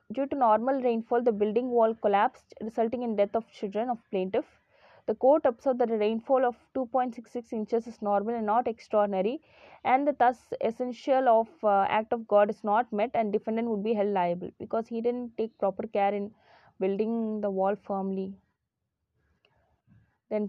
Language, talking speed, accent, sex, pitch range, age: Tamil, 175 wpm, native, female, 210-245 Hz, 20-39